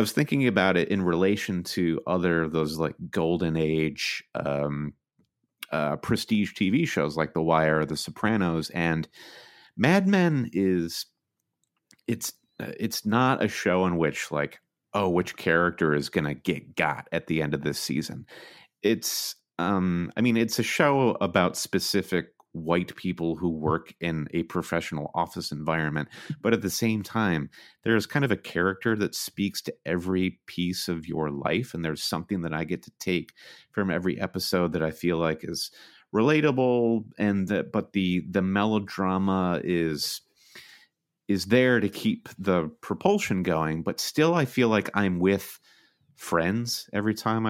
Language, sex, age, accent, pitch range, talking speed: English, male, 30-49, American, 80-110 Hz, 155 wpm